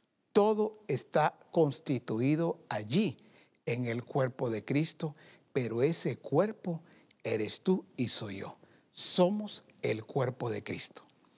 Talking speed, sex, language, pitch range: 115 wpm, male, Spanish, 130-195 Hz